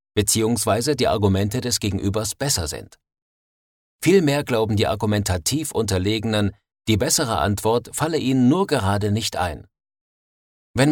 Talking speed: 120 wpm